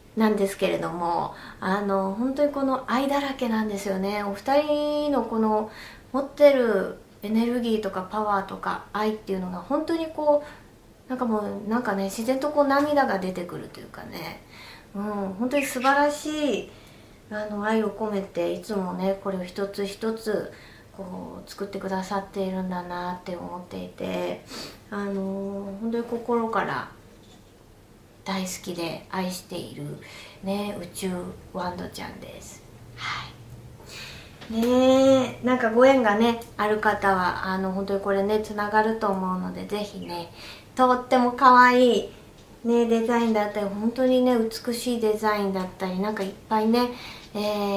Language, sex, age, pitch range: Japanese, female, 30-49, 195-245 Hz